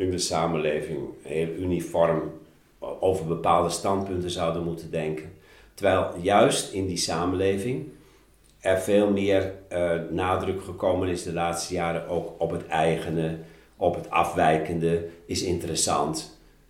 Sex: male